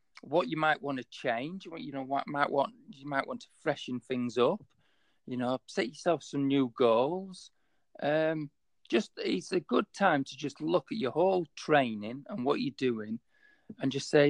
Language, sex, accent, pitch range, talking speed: English, male, British, 115-165 Hz, 195 wpm